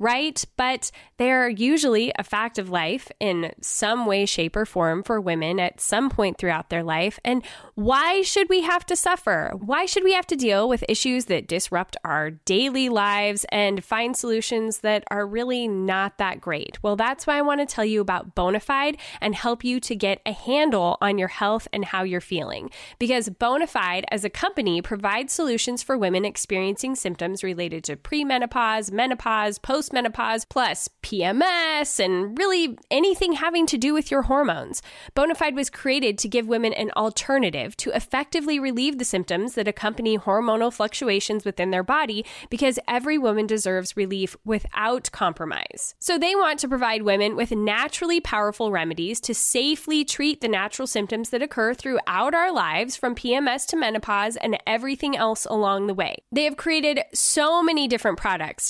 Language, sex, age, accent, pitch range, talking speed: English, female, 10-29, American, 205-270 Hz, 175 wpm